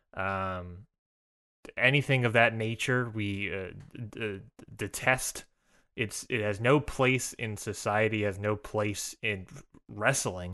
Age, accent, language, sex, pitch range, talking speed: 20-39, American, English, male, 95-120 Hz, 125 wpm